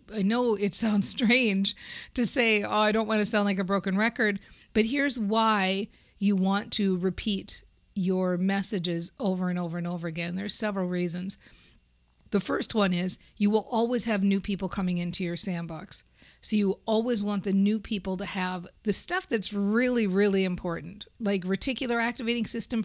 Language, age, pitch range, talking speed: English, 50-69, 190-225 Hz, 180 wpm